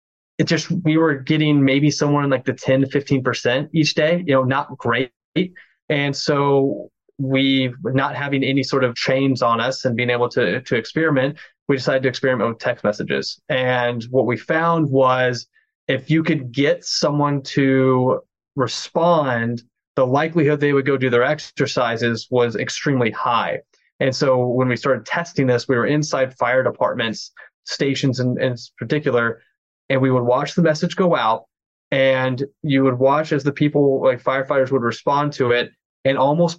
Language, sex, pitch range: English, male, 130-155 Hz